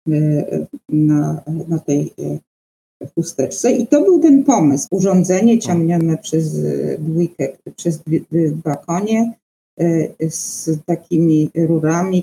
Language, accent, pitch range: Polish, native, 155-210 Hz